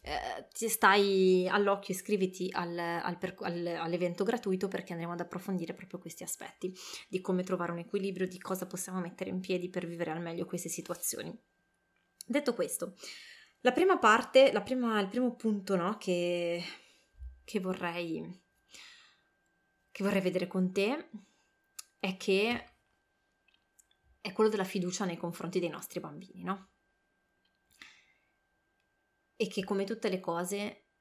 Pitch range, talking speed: 175-200 Hz, 135 wpm